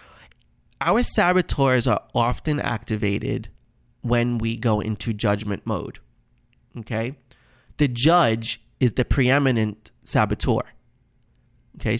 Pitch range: 115-135 Hz